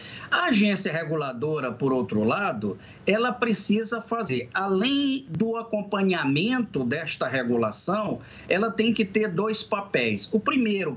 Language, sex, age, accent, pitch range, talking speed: Portuguese, male, 50-69, Brazilian, 165-225 Hz, 120 wpm